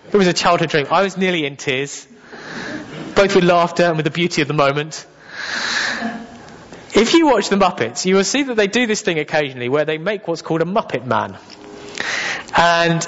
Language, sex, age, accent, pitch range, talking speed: English, male, 30-49, British, 140-195 Hz, 195 wpm